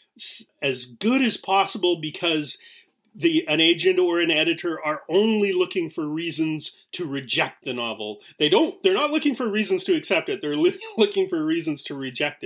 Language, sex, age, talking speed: English, male, 30-49, 175 wpm